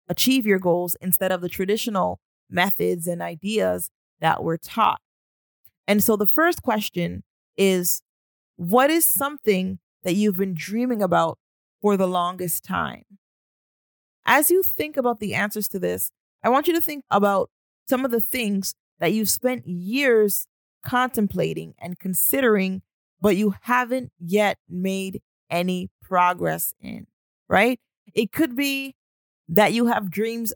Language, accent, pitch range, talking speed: English, American, 180-225 Hz, 140 wpm